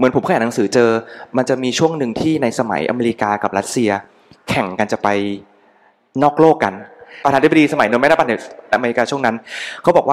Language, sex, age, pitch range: Thai, male, 20-39, 115-160 Hz